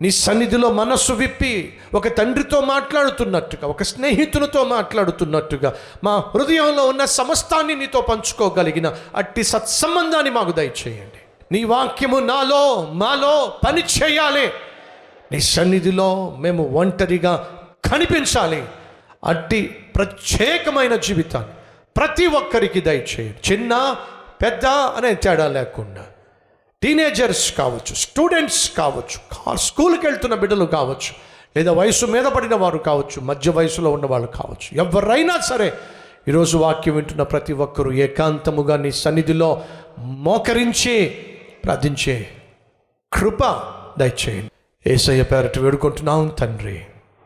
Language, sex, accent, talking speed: Telugu, male, native, 100 wpm